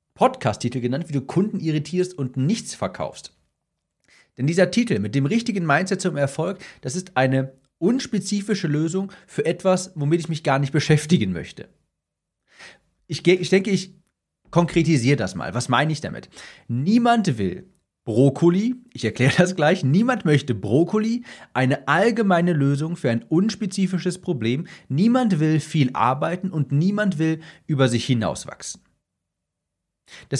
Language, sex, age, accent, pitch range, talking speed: German, male, 40-59, German, 125-180 Hz, 140 wpm